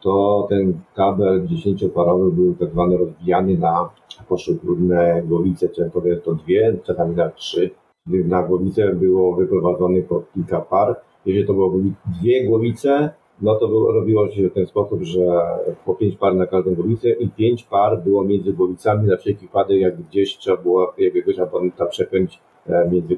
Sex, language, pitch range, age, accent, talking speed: male, Polish, 90-120 Hz, 50-69, native, 155 wpm